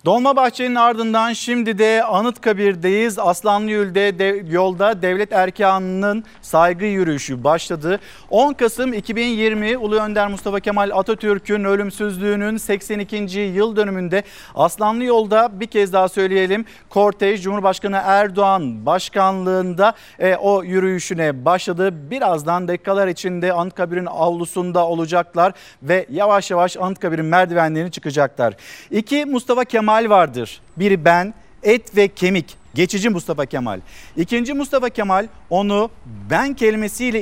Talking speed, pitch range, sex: 115 wpm, 180-225 Hz, male